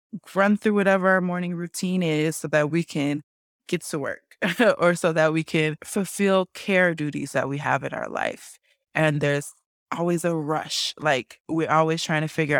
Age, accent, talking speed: 20-39, American, 185 wpm